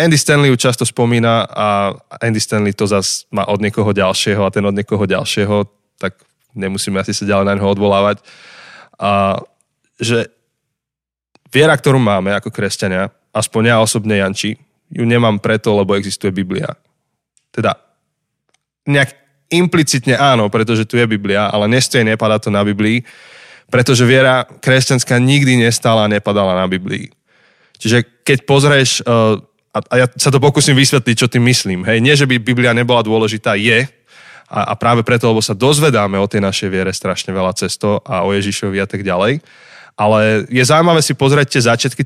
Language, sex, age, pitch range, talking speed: Slovak, male, 20-39, 100-130 Hz, 160 wpm